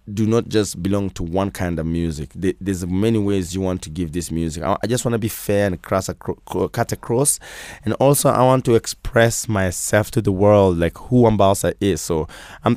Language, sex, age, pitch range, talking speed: English, male, 20-39, 85-110 Hz, 210 wpm